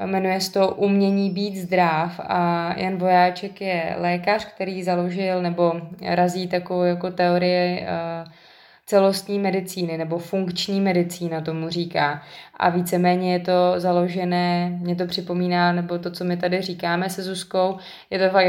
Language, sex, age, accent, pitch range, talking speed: Czech, female, 20-39, native, 170-180 Hz, 145 wpm